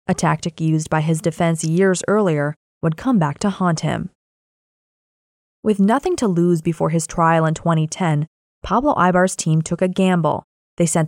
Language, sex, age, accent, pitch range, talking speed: English, female, 20-39, American, 160-200 Hz, 170 wpm